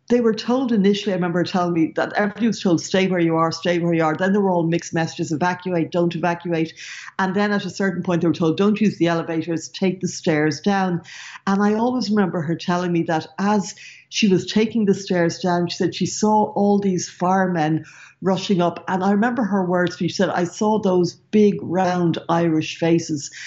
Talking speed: 215 wpm